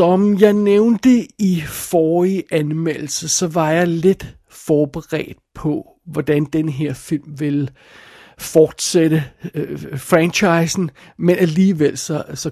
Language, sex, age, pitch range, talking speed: Danish, male, 60-79, 150-180 Hz, 115 wpm